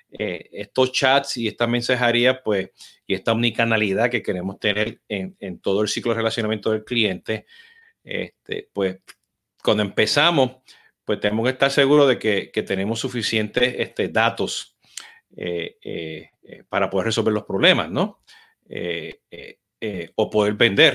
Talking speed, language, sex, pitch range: 145 wpm, Spanish, male, 100-130 Hz